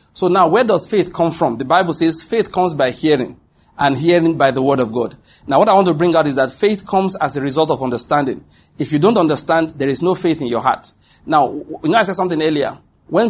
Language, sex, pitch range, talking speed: English, male, 135-170 Hz, 255 wpm